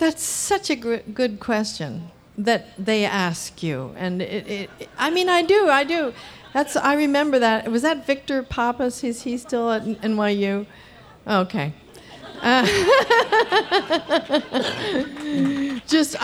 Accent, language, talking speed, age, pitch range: American, English, 125 wpm, 50-69, 170-240 Hz